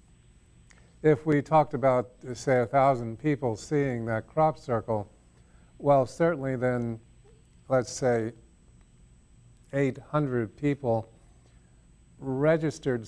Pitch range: 110-130 Hz